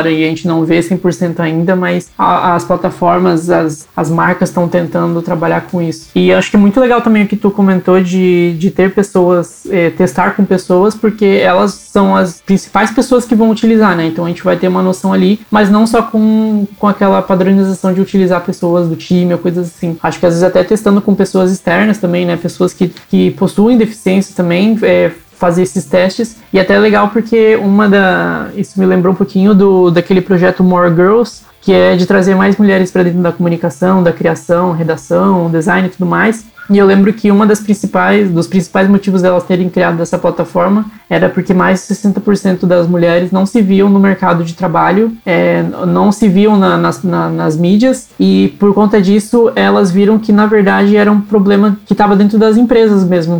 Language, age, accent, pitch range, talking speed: Portuguese, 20-39, Brazilian, 175-205 Hz, 200 wpm